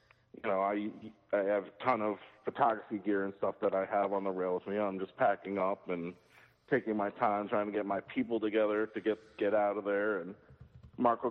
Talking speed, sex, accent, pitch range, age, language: 225 wpm, male, American, 105-130 Hz, 40-59, English